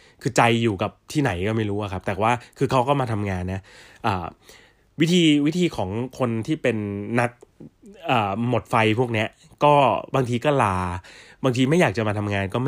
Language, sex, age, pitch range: Thai, male, 20-39, 105-140 Hz